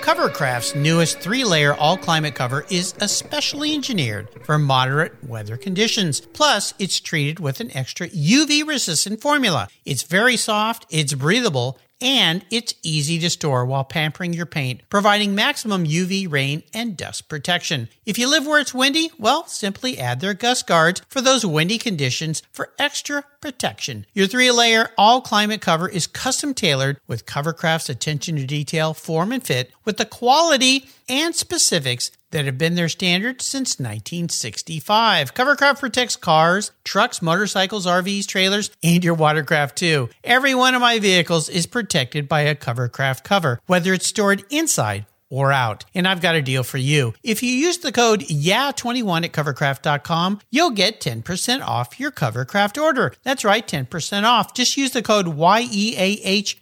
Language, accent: English, American